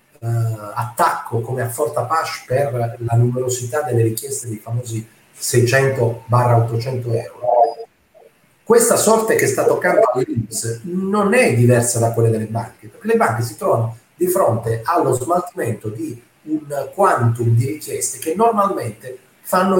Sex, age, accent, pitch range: male, 40-59, native, 115-160 Hz